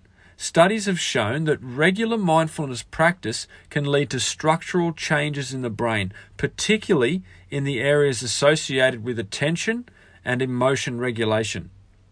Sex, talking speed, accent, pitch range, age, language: male, 125 wpm, Australian, 110-160 Hz, 40-59, English